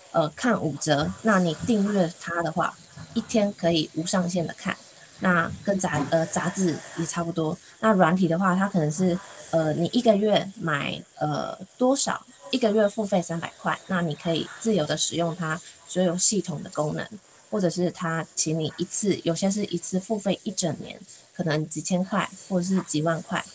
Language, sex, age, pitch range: Chinese, female, 20-39, 165-205 Hz